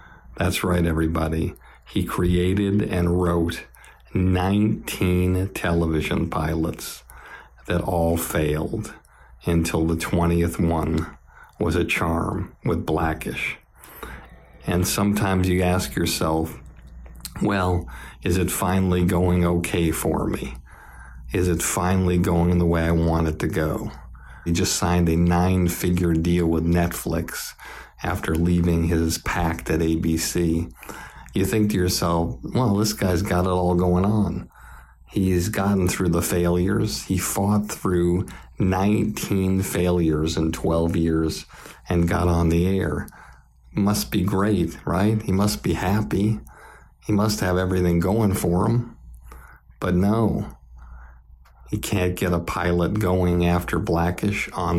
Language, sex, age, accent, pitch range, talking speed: English, male, 50-69, American, 80-95 Hz, 130 wpm